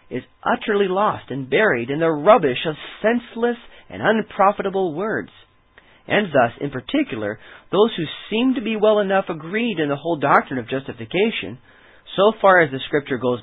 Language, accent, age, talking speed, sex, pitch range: English, American, 40-59, 165 wpm, male, 120-180 Hz